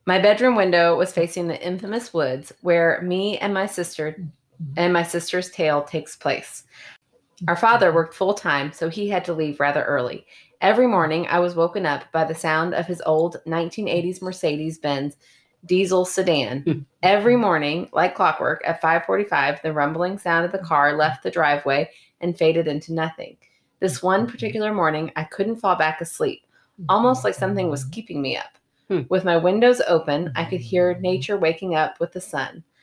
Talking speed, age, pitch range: 175 wpm, 30-49, 155-185 Hz